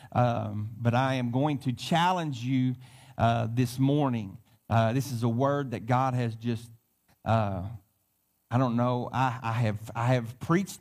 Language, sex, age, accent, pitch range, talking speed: English, male, 40-59, American, 110-135 Hz, 165 wpm